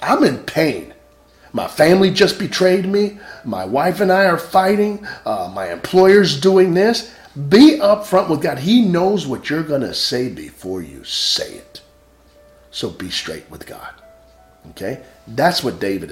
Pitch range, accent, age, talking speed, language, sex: 125-190 Hz, American, 40-59, 155 wpm, English, male